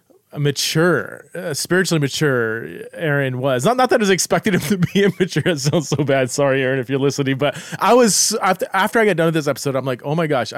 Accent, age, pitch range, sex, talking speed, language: American, 30-49, 125-170 Hz, male, 240 wpm, English